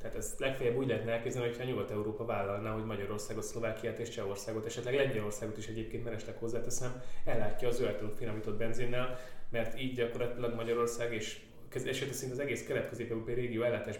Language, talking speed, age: Hungarian, 160 wpm, 20-39